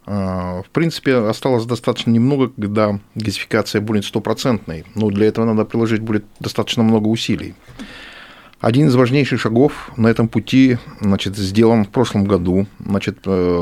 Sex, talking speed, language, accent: male, 135 wpm, Russian, native